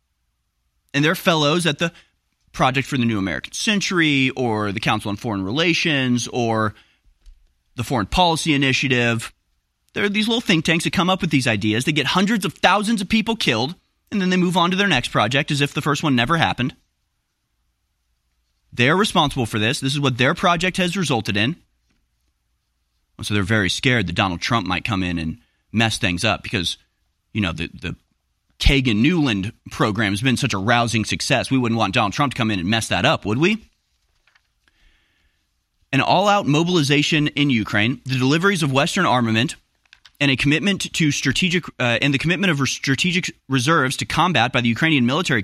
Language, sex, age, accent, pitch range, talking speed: English, male, 30-49, American, 110-165 Hz, 180 wpm